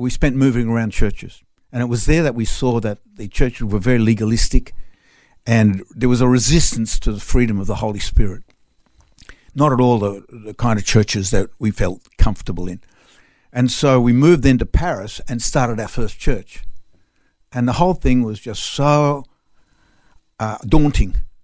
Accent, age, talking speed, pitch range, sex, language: Australian, 60-79, 175 wpm, 105-140 Hz, male, English